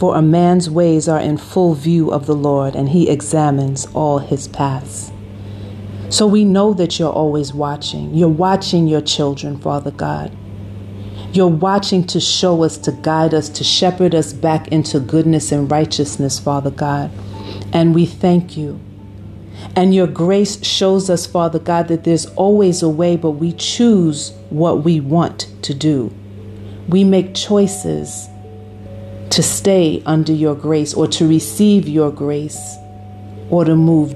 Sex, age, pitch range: female, 40-59, 105-170 Hz